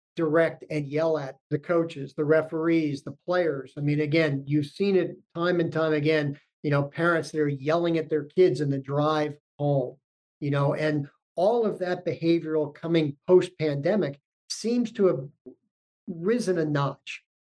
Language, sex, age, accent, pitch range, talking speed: English, male, 50-69, American, 145-165 Hz, 165 wpm